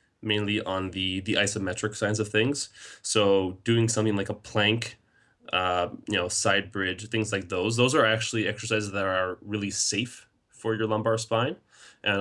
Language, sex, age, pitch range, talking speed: English, male, 20-39, 95-110 Hz, 170 wpm